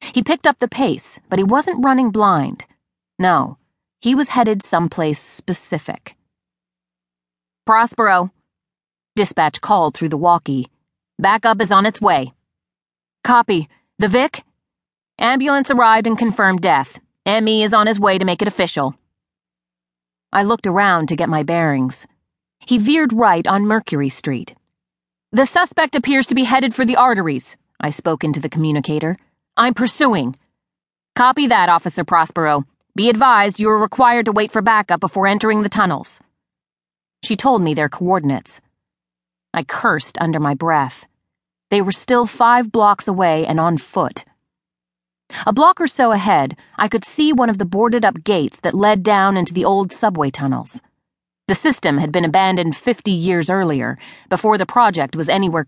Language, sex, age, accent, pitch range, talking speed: English, female, 30-49, American, 155-230 Hz, 155 wpm